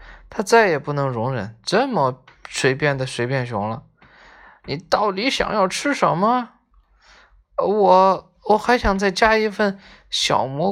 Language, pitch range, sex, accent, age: Chinese, 135-195 Hz, male, native, 20-39